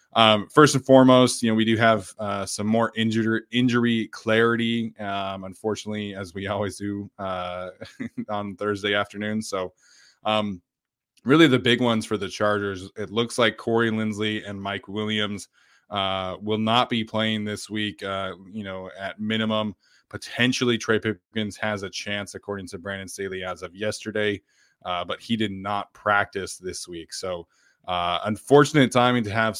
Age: 20-39